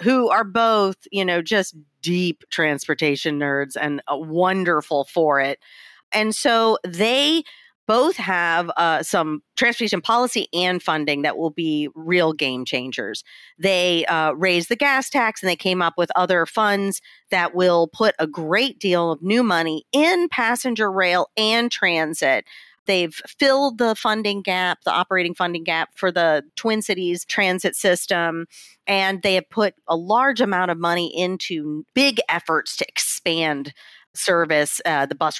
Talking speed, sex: 155 wpm, female